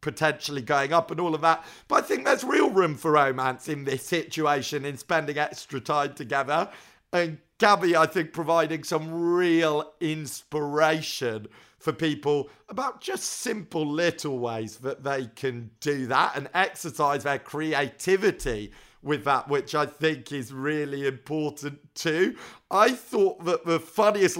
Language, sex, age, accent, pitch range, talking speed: English, male, 40-59, British, 140-175 Hz, 150 wpm